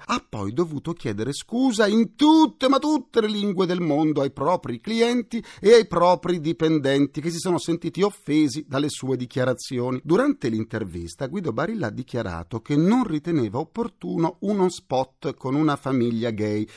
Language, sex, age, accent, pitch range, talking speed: Italian, male, 40-59, native, 125-200 Hz, 160 wpm